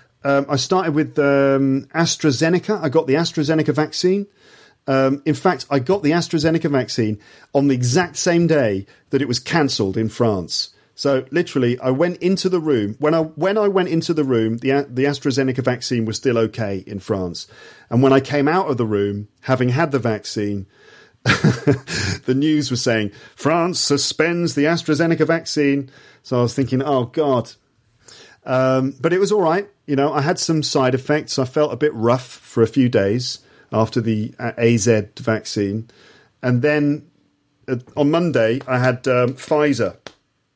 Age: 40-59